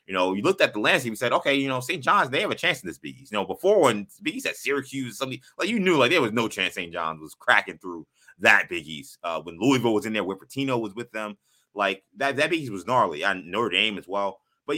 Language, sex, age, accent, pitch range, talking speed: English, male, 20-39, American, 95-130 Hz, 270 wpm